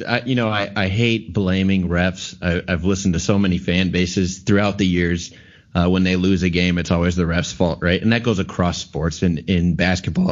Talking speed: 215 wpm